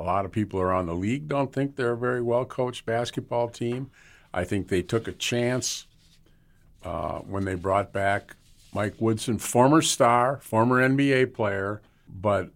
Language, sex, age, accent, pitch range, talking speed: English, male, 50-69, American, 100-130 Hz, 160 wpm